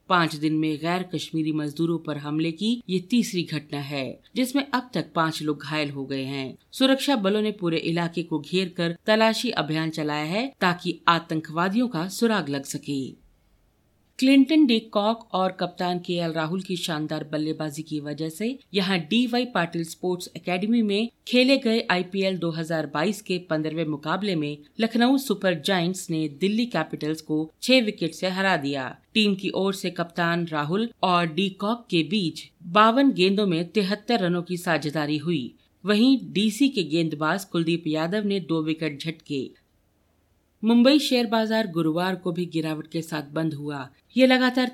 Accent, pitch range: native, 155-210 Hz